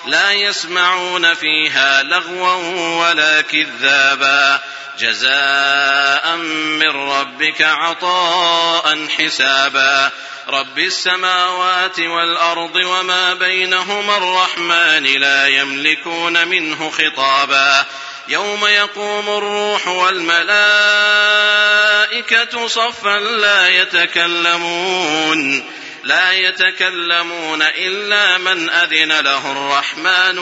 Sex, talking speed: male, 70 wpm